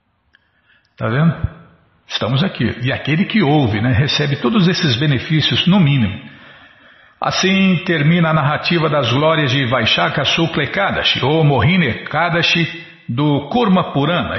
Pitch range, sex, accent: 130-170 Hz, male, Brazilian